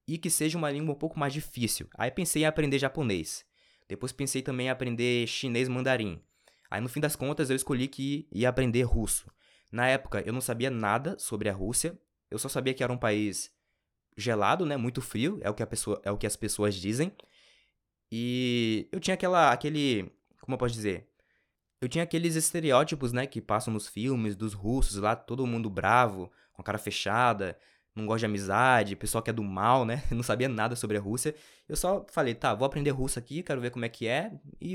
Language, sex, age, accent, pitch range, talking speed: Portuguese, male, 20-39, Brazilian, 110-145 Hz, 210 wpm